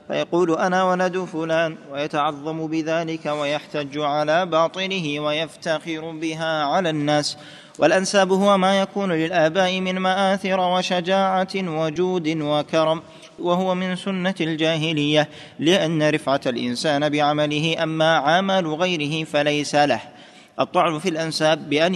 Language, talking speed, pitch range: Arabic, 110 wpm, 150-180 Hz